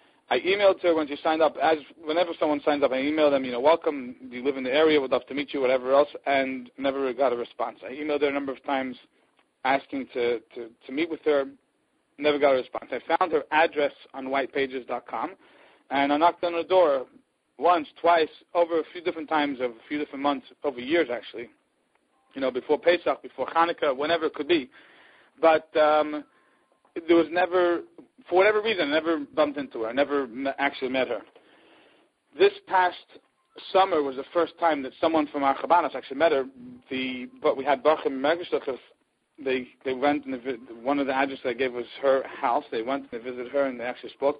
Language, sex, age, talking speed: English, male, 40-59, 210 wpm